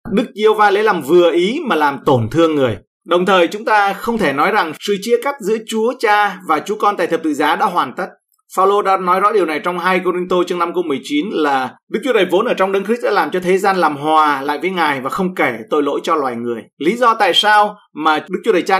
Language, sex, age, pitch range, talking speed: Vietnamese, male, 20-39, 165-225 Hz, 280 wpm